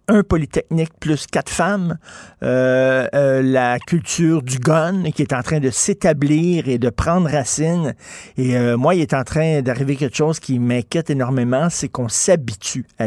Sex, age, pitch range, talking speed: male, 50-69, 130-165 Hz, 175 wpm